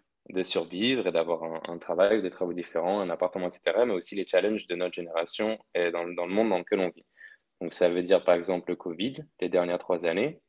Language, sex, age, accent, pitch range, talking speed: French, male, 20-39, French, 90-100 Hz, 240 wpm